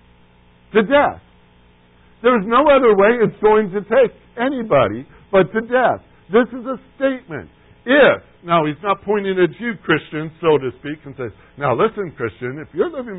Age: 60-79